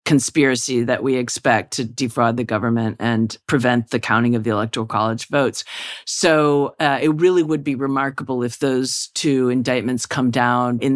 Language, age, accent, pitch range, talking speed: English, 40-59, American, 125-140 Hz, 170 wpm